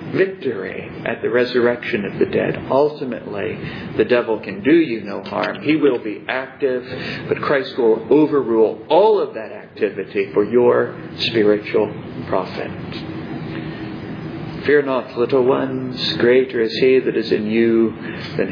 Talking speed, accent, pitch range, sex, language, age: 140 wpm, American, 115-165 Hz, male, English, 50-69